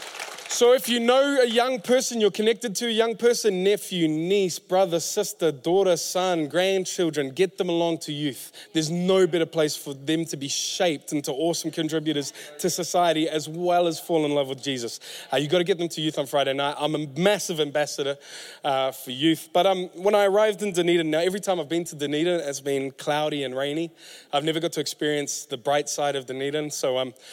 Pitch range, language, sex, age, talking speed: 145-185 Hz, English, male, 20-39, 210 wpm